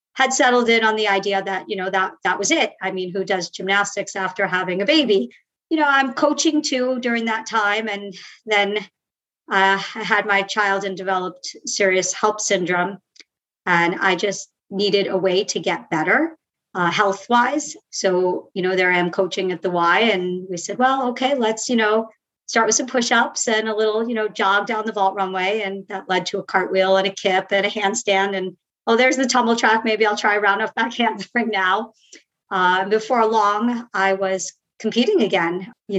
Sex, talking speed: male, 200 wpm